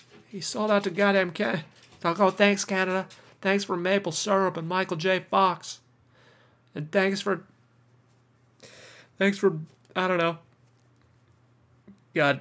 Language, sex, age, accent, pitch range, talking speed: English, male, 30-49, American, 125-170 Hz, 130 wpm